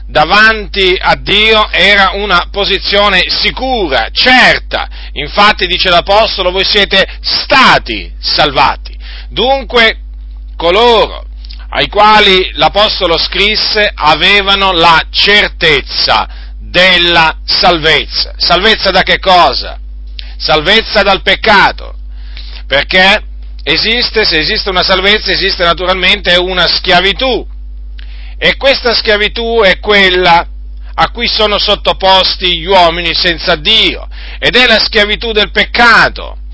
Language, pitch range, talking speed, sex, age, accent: Italian, 165-215 Hz, 100 wpm, male, 40-59, native